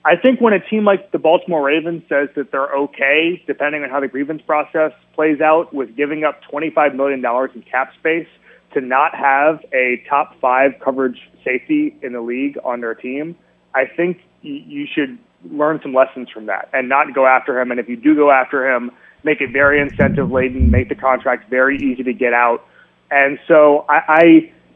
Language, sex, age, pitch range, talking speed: English, male, 30-49, 130-165 Hz, 190 wpm